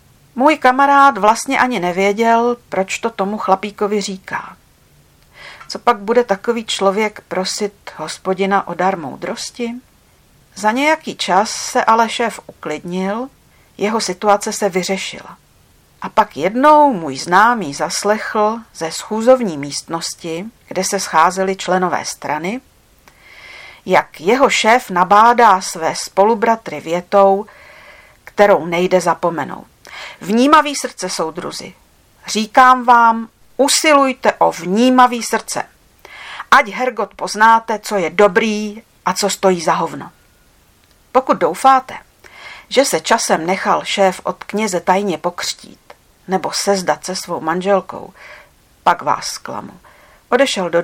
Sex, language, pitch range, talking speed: female, Czech, 185-230 Hz, 115 wpm